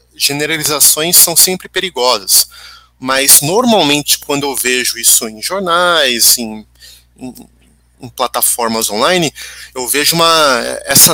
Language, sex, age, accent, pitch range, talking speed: Portuguese, male, 30-49, Brazilian, 135-195 Hz, 115 wpm